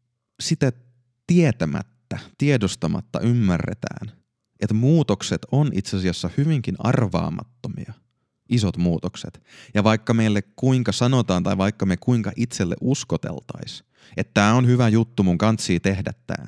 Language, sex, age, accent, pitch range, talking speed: Finnish, male, 30-49, native, 95-120 Hz, 120 wpm